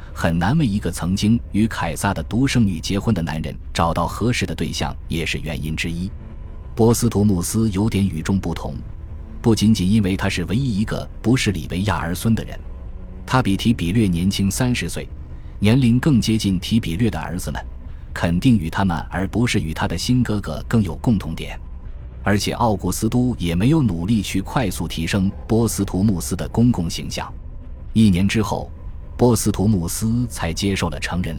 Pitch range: 80-110 Hz